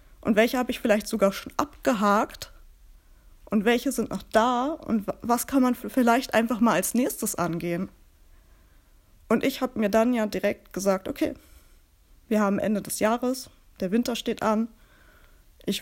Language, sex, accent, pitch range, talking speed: German, female, German, 205-250 Hz, 160 wpm